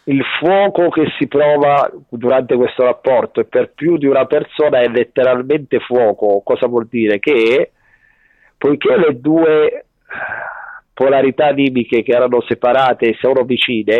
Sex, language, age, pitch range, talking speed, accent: male, Italian, 40-59, 120-155 Hz, 135 wpm, native